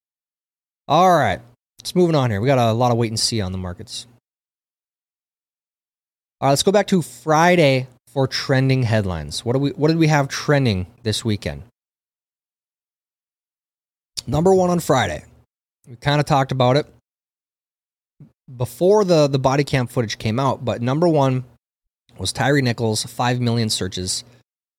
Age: 20-39